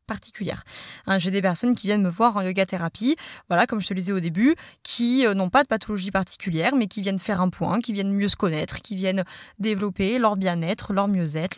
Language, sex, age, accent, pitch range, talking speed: French, female, 20-39, French, 185-235 Hz, 235 wpm